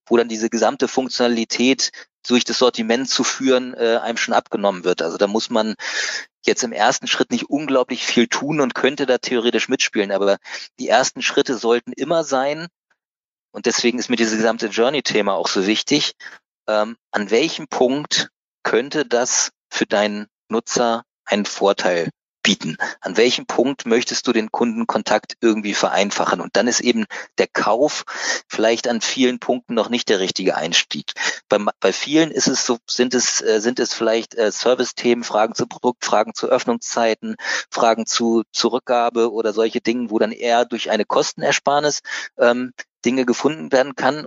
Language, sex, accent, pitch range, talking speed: German, male, German, 110-125 Hz, 165 wpm